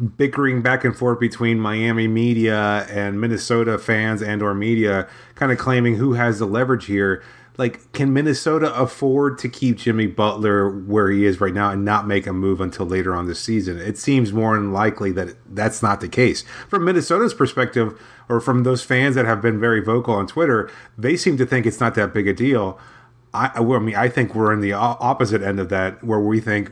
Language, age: English, 30-49